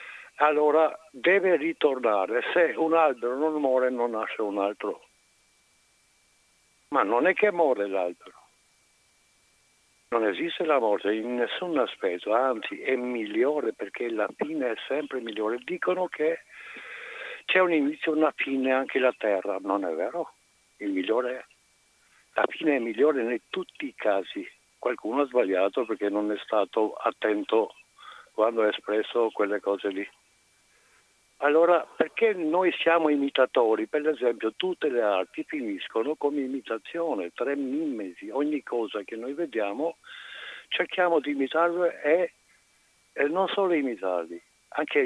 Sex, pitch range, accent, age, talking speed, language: male, 115-185 Hz, native, 60-79, 135 wpm, Italian